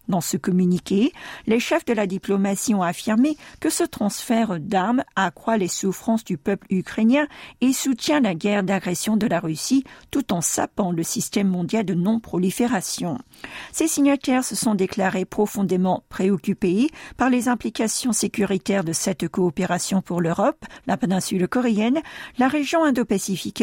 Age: 50-69